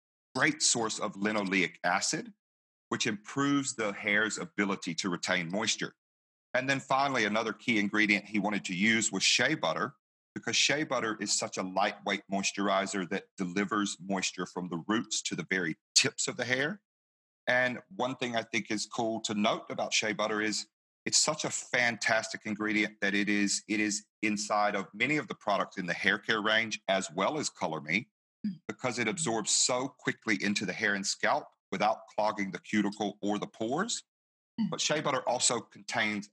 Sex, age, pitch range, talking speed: male, 40-59, 95-110 Hz, 175 wpm